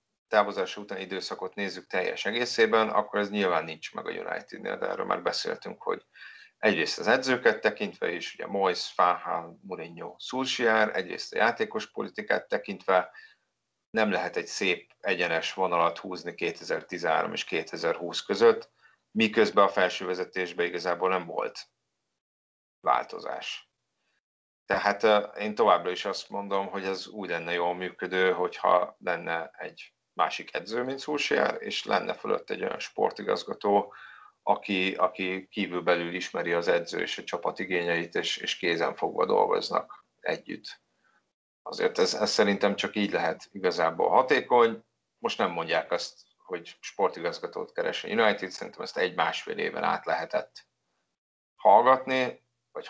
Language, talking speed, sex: Hungarian, 135 wpm, male